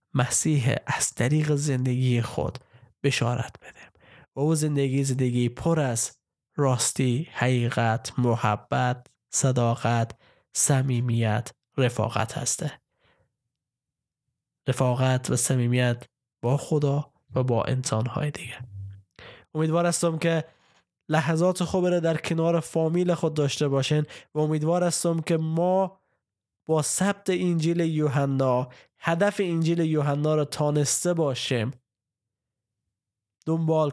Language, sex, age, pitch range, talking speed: Persian, male, 20-39, 120-155 Hz, 100 wpm